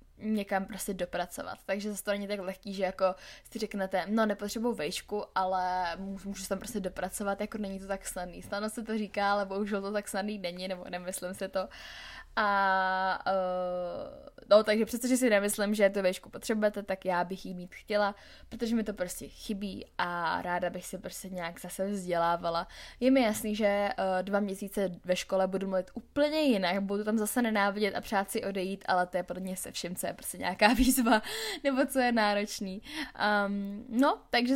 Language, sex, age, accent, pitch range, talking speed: Czech, female, 10-29, native, 190-220 Hz, 195 wpm